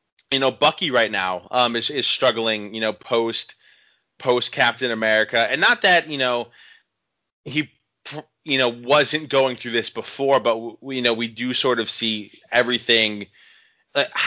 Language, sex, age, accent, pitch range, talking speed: English, male, 20-39, American, 110-135 Hz, 160 wpm